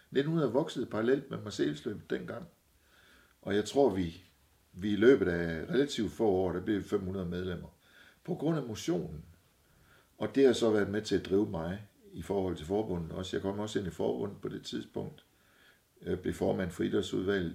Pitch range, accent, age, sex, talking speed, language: 90-105 Hz, native, 60-79, male, 195 wpm, Danish